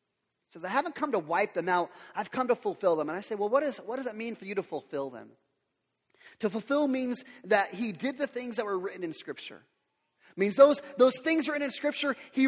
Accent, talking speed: American, 245 wpm